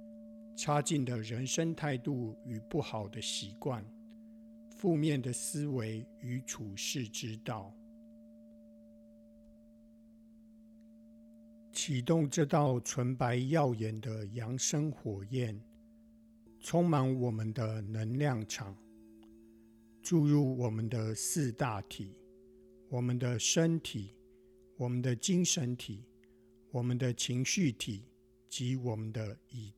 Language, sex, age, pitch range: English, male, 60-79, 110-155 Hz